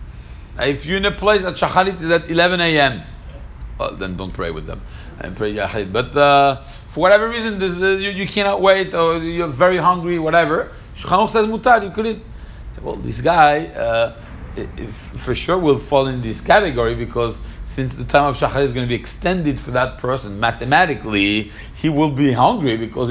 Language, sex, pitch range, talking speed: English, male, 130-175 Hz, 180 wpm